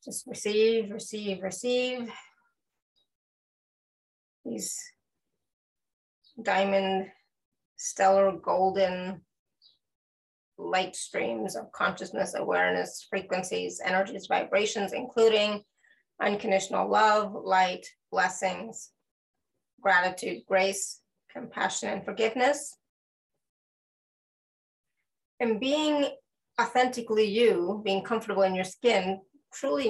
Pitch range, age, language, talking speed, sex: 190-230 Hz, 30-49, English, 70 wpm, female